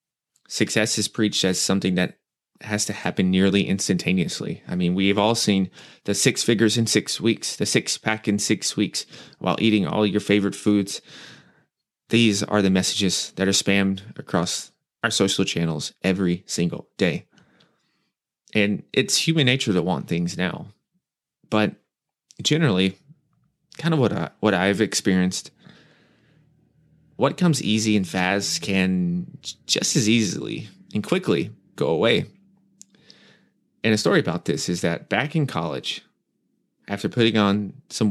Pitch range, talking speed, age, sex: 95-115 Hz, 145 wpm, 20-39, male